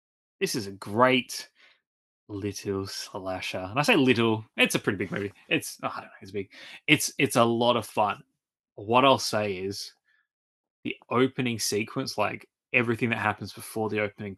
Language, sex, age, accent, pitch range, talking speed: English, male, 20-39, Australian, 105-130 Hz, 175 wpm